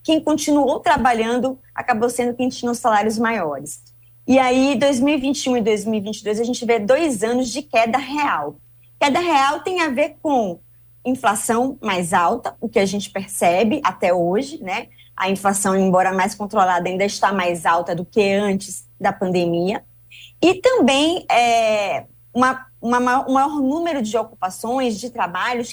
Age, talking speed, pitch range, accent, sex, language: 20-39, 155 wpm, 185-265 Hz, Brazilian, female, Portuguese